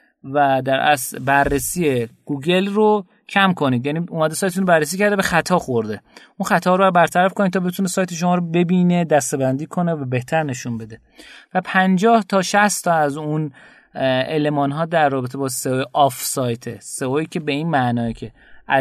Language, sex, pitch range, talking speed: Persian, male, 130-175 Hz, 170 wpm